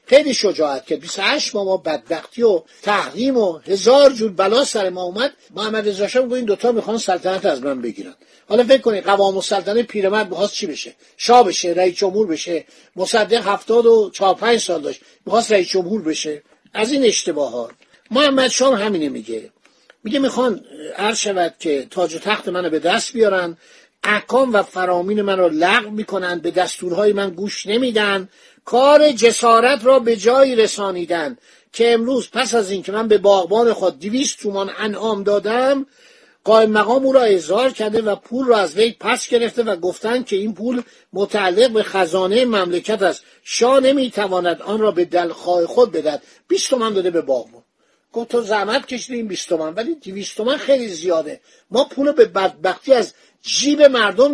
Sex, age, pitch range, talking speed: male, 50-69, 185-245 Hz, 170 wpm